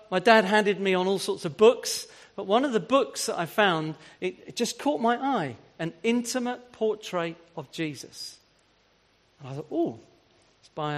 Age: 40-59